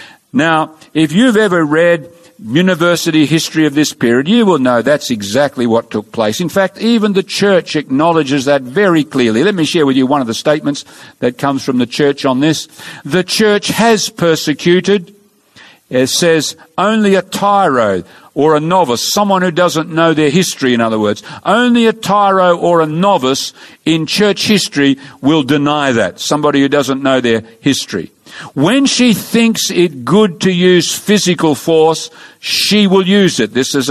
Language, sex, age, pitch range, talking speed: English, male, 50-69, 145-205 Hz, 170 wpm